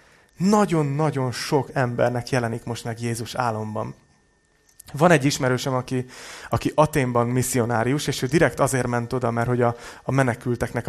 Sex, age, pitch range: male, 30-49, 120-145 Hz